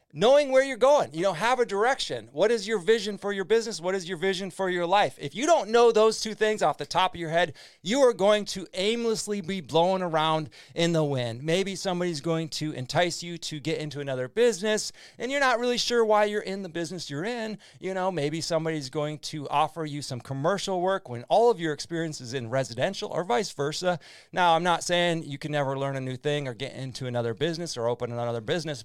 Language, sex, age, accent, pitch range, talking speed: English, male, 30-49, American, 135-190 Hz, 235 wpm